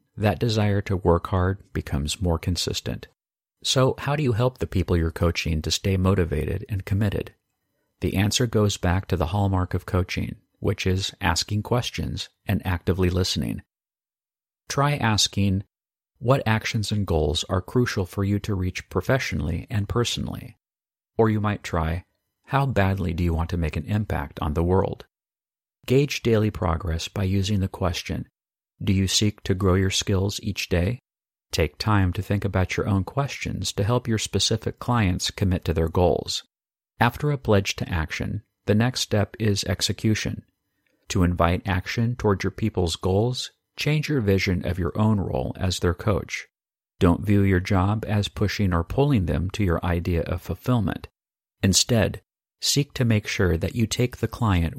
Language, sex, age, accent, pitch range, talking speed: English, male, 50-69, American, 90-110 Hz, 170 wpm